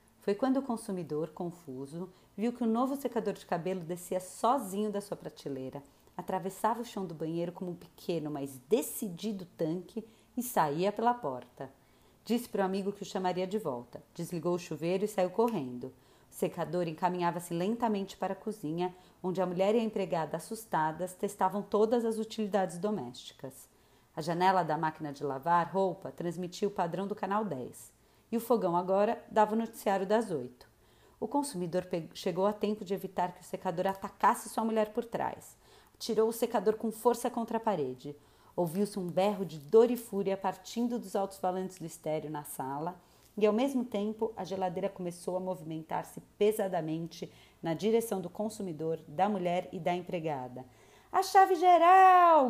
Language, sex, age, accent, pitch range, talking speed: Portuguese, female, 40-59, Brazilian, 170-215 Hz, 170 wpm